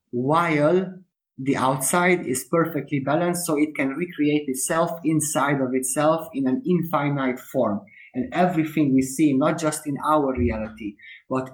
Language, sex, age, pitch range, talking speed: English, male, 30-49, 130-155 Hz, 145 wpm